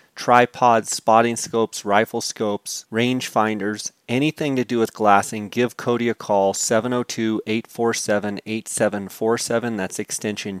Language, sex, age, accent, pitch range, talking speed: English, male, 30-49, American, 105-120 Hz, 110 wpm